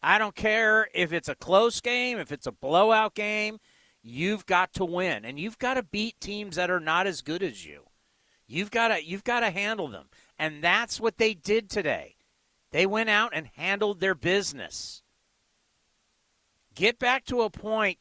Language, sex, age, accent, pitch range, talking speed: English, male, 50-69, American, 185-235 Hz, 185 wpm